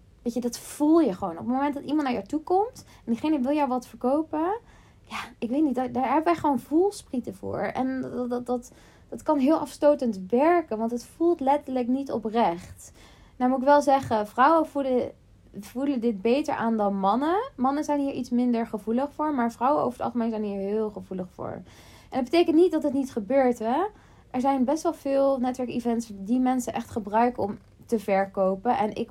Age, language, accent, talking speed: 20-39, Dutch, Dutch, 210 wpm